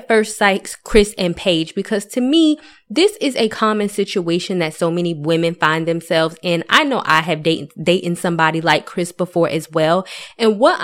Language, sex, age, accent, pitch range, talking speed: English, female, 20-39, American, 170-215 Hz, 185 wpm